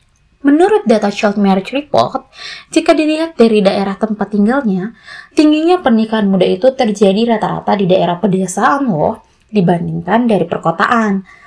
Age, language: 20-39, Indonesian